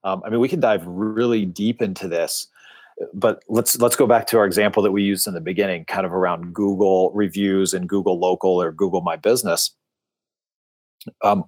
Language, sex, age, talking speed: English, male, 30-49, 195 wpm